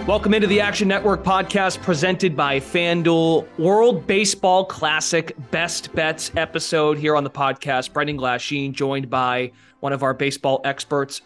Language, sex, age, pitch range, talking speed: English, male, 20-39, 140-185 Hz, 150 wpm